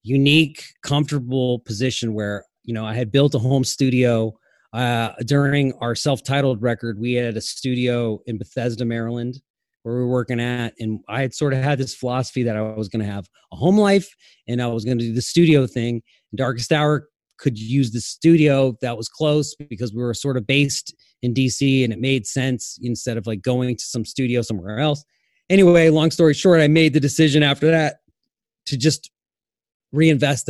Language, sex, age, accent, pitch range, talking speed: English, male, 30-49, American, 115-140 Hz, 195 wpm